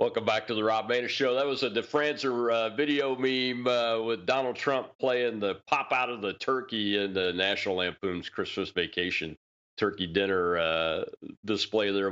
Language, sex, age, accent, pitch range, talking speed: English, male, 40-59, American, 90-120 Hz, 180 wpm